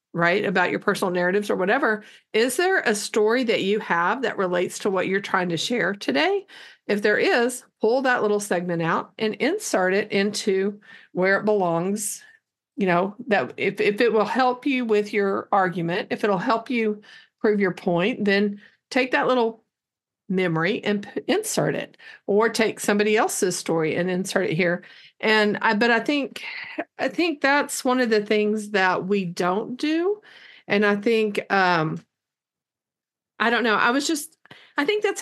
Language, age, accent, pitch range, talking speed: English, 50-69, American, 195-250 Hz, 175 wpm